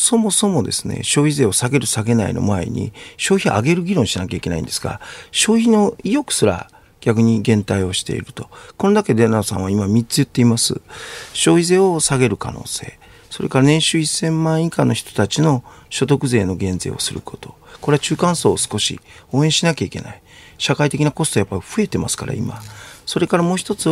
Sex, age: male, 40-59